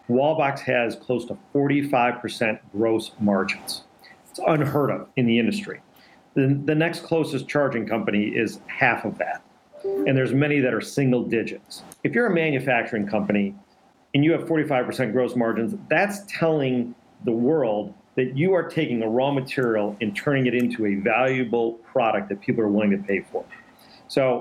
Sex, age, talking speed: male, 40-59, 170 wpm